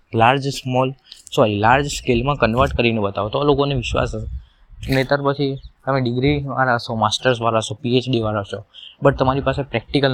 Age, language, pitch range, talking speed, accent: 20-39, Gujarati, 110-135 Hz, 100 wpm, native